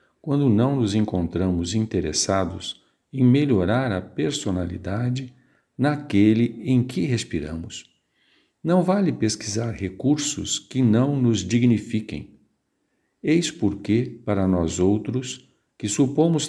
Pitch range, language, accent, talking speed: 90-130 Hz, Portuguese, Brazilian, 100 wpm